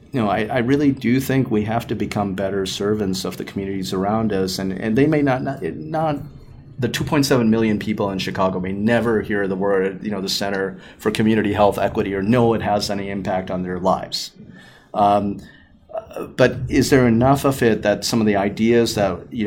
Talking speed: 205 wpm